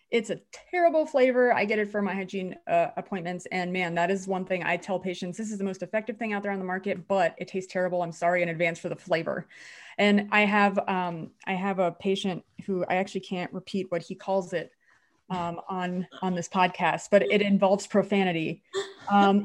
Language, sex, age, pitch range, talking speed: English, female, 30-49, 175-205 Hz, 215 wpm